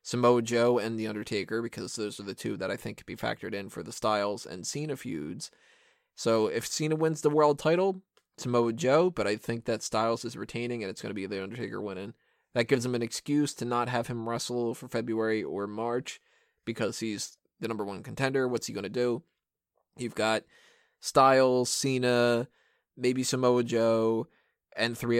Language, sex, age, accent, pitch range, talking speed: English, male, 20-39, American, 115-140 Hz, 195 wpm